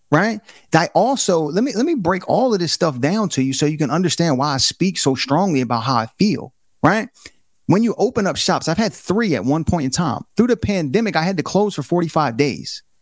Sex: male